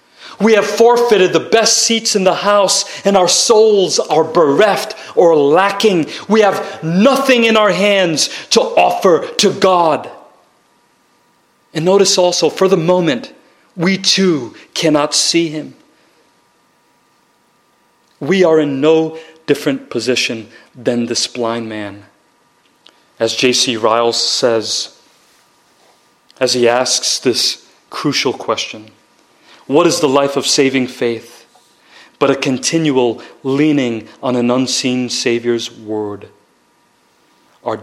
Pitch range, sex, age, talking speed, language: 125-180 Hz, male, 40-59, 115 wpm, English